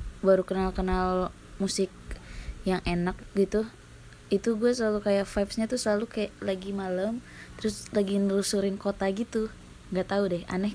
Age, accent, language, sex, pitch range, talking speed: 20-39, native, Indonesian, female, 195-225 Hz, 145 wpm